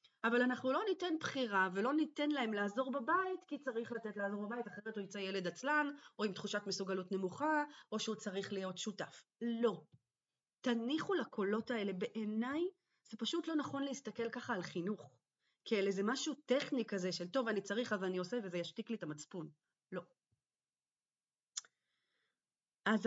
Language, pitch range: Hebrew, 200-260 Hz